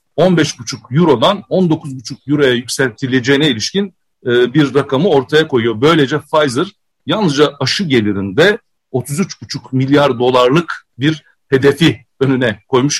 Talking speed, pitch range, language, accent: 100 wpm, 125-160 Hz, Turkish, native